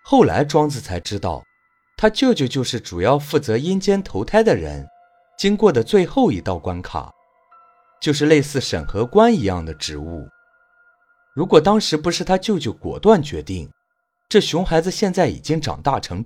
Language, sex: Chinese, male